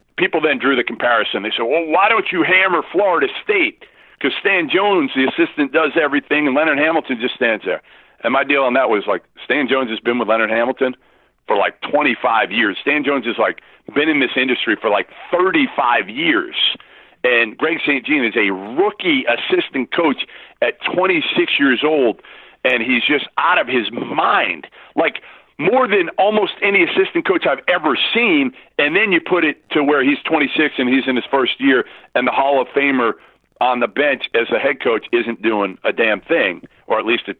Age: 50-69